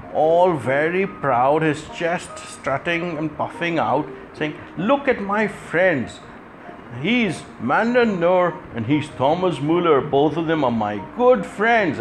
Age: 60-79